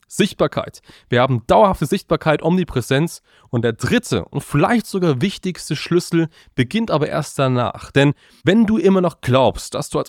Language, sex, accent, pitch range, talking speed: German, male, German, 130-175 Hz, 165 wpm